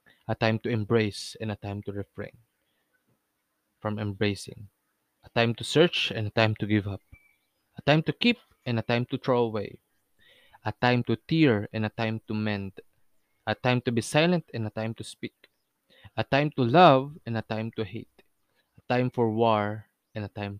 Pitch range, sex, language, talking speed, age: 105-120 Hz, male, Filipino, 190 wpm, 20-39